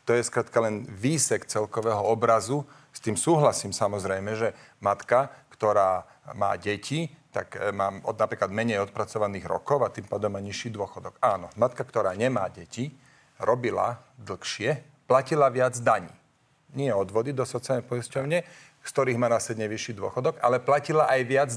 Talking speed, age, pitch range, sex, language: 150 wpm, 40-59, 105-130 Hz, male, Slovak